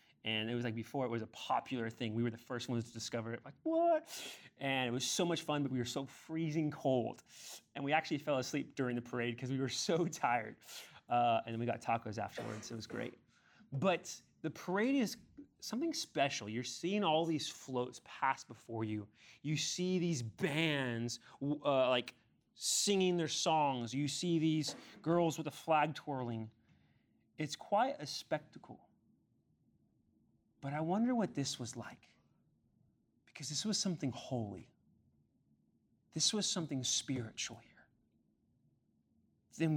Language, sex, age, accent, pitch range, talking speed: English, male, 30-49, American, 115-155 Hz, 165 wpm